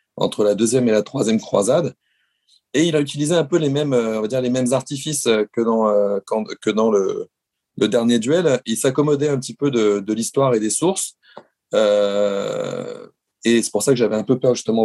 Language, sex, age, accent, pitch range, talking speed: English, male, 30-49, French, 110-150 Hz, 215 wpm